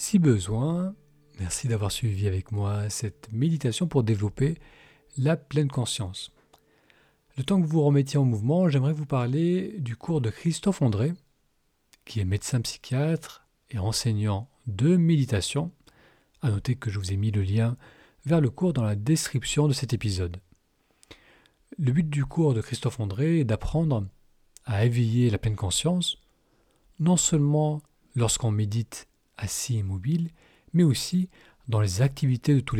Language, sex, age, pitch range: French, male, 40-59, 105-150 Hz